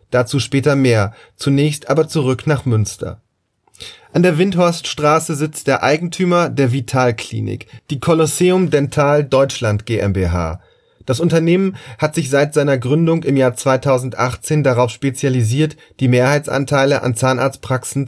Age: 30-49